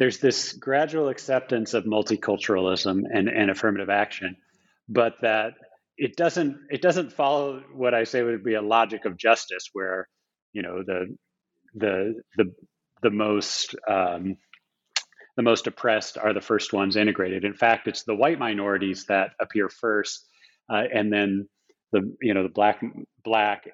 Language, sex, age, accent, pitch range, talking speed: English, male, 30-49, American, 100-125 Hz, 155 wpm